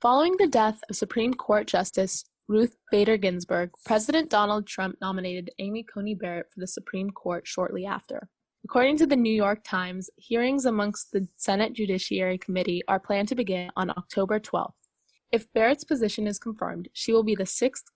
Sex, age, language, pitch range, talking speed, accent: female, 20-39, English, 185-225 Hz, 175 wpm, American